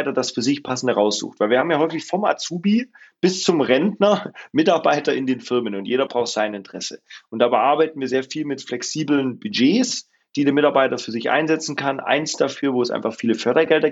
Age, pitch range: 30-49, 120-145 Hz